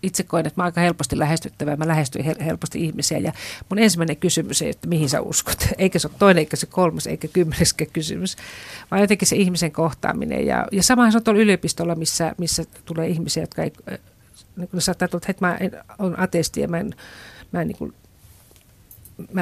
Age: 50-69